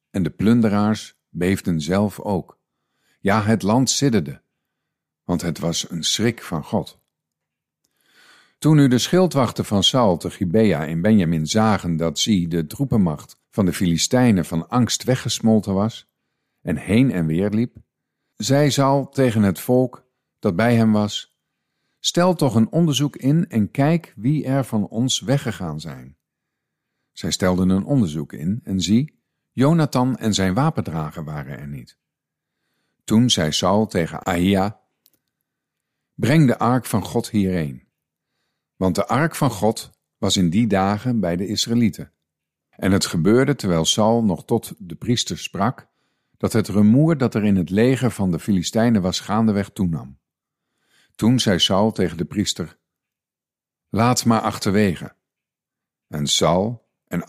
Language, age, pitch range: Dutch, 50-69, 90-125 Hz